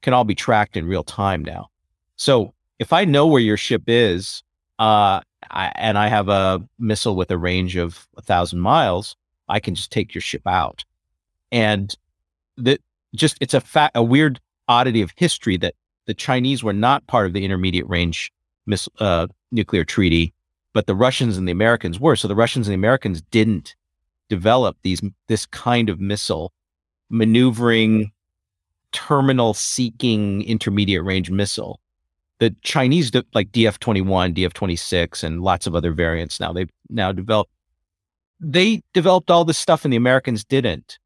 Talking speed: 160 wpm